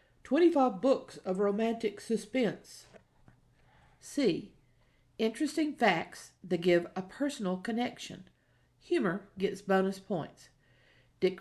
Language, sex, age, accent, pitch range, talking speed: English, female, 50-69, American, 180-240 Hz, 95 wpm